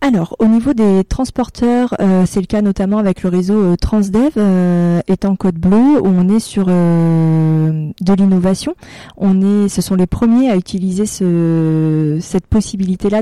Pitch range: 185-225 Hz